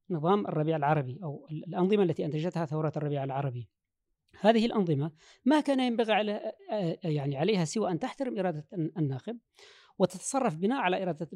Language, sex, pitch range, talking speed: Arabic, female, 165-230 Hz, 145 wpm